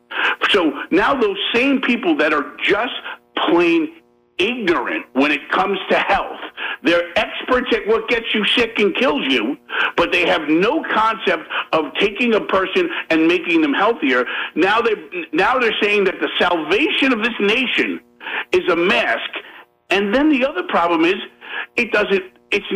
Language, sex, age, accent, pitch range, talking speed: English, male, 50-69, American, 205-345 Hz, 160 wpm